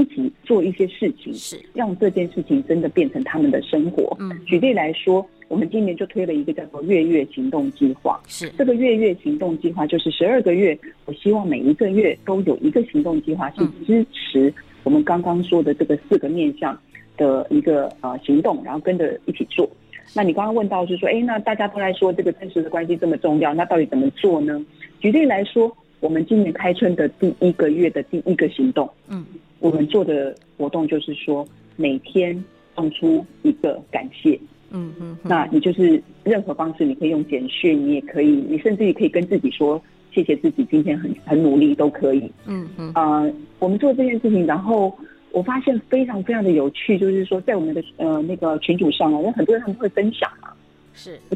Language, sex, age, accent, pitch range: Chinese, female, 40-59, native, 160-245 Hz